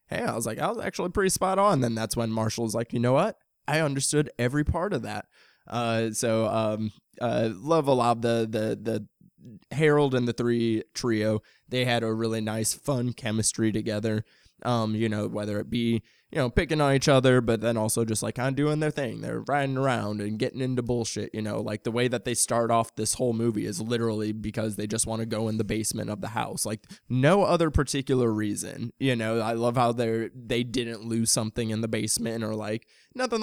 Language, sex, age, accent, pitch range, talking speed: English, male, 20-39, American, 110-130 Hz, 230 wpm